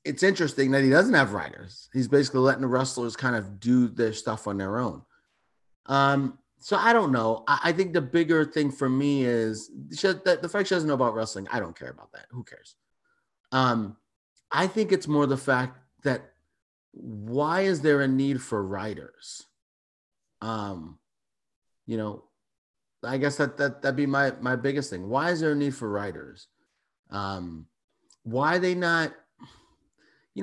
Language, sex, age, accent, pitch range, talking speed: English, male, 30-49, American, 115-170 Hz, 180 wpm